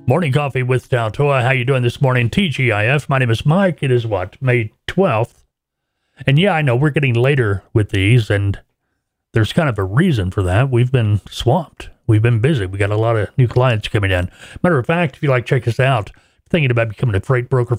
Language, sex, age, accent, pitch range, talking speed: English, male, 40-59, American, 110-140 Hz, 225 wpm